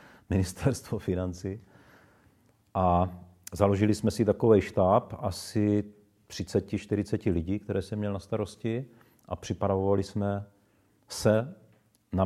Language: Czech